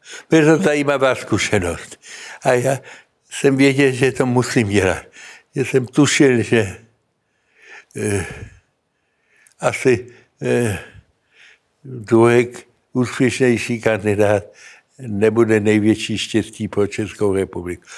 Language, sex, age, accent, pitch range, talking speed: Czech, male, 60-79, native, 110-125 Hz, 95 wpm